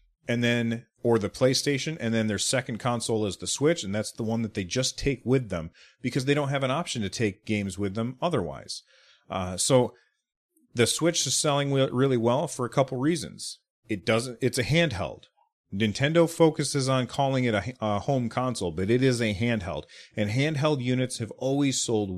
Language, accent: English, American